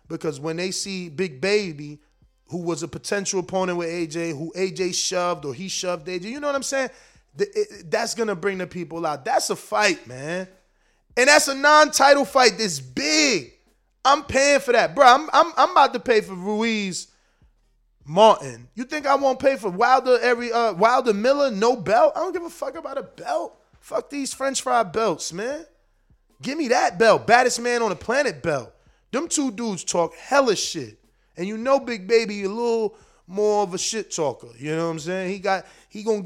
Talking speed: 200 wpm